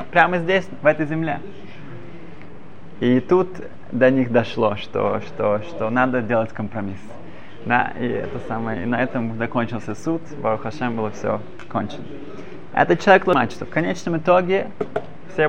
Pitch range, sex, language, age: 110-135 Hz, male, Russian, 20-39